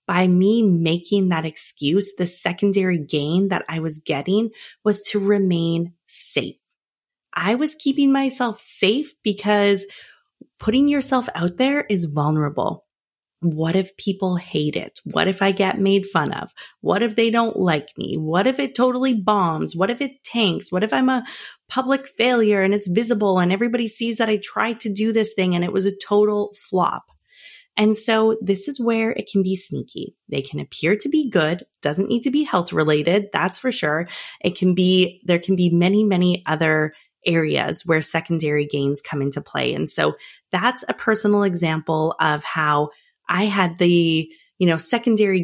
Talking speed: 175 wpm